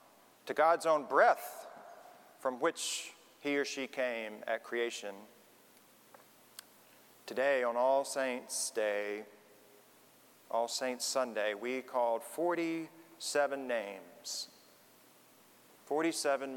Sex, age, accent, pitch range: male, 40-59, American, 115-140 Hz